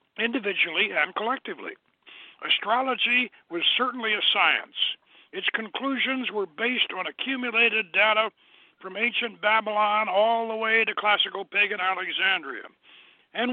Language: English